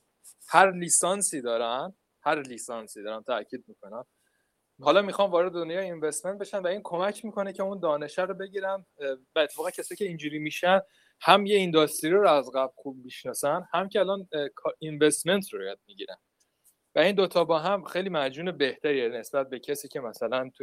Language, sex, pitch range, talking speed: Persian, male, 130-195 Hz, 170 wpm